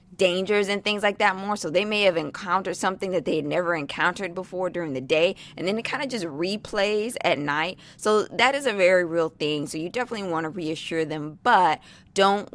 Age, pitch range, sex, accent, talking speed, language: 20-39, 160-195 Hz, female, American, 220 wpm, English